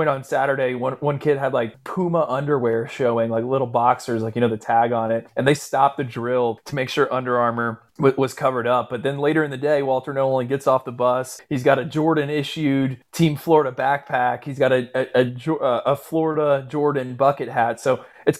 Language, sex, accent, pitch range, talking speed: English, male, American, 120-145 Hz, 220 wpm